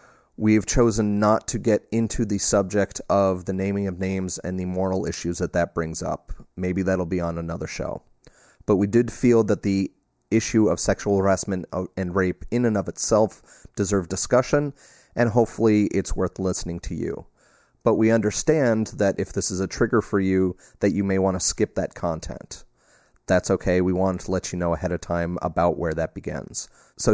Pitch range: 90-105 Hz